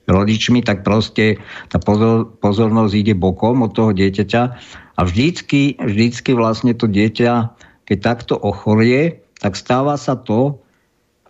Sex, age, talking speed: male, 50-69, 120 wpm